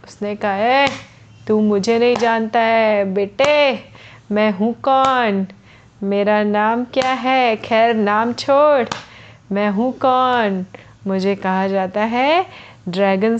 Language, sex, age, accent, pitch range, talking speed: Hindi, female, 30-49, native, 200-250 Hz, 120 wpm